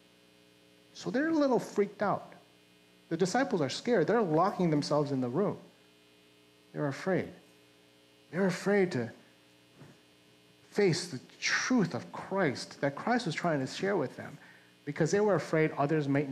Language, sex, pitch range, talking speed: English, male, 145-220 Hz, 145 wpm